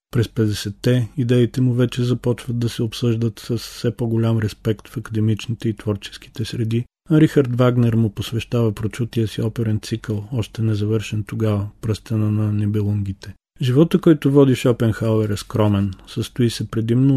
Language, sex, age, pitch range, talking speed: Bulgarian, male, 40-59, 110-125 Hz, 150 wpm